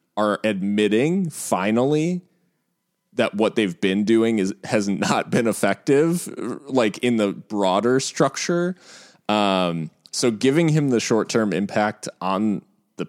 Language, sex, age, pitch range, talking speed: English, male, 20-39, 90-110 Hz, 130 wpm